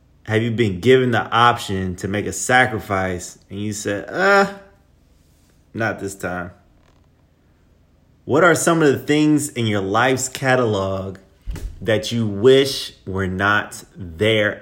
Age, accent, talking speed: 30-49, American, 135 wpm